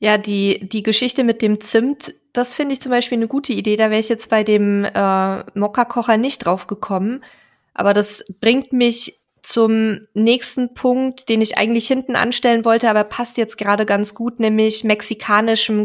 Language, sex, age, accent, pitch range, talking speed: German, female, 20-39, German, 200-235 Hz, 180 wpm